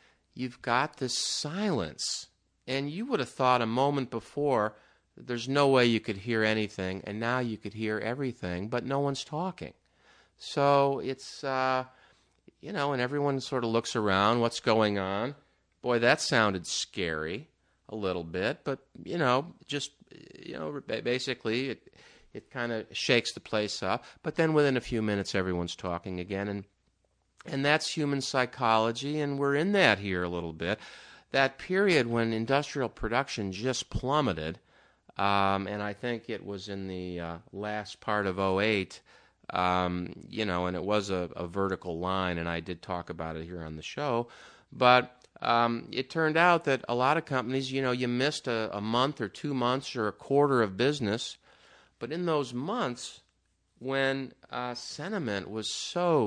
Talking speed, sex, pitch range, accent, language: 175 wpm, male, 100-135 Hz, American, English